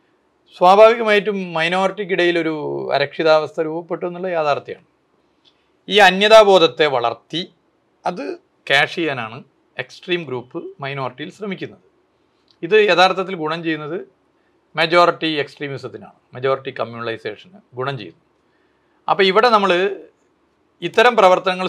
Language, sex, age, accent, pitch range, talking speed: Malayalam, male, 40-59, native, 145-205 Hz, 85 wpm